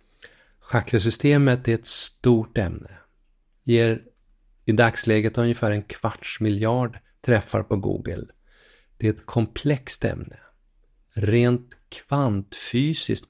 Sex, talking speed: male, 100 wpm